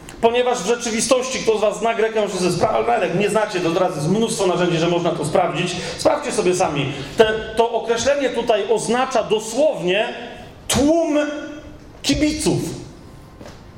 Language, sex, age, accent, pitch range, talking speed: Polish, male, 40-59, native, 180-245 Hz, 145 wpm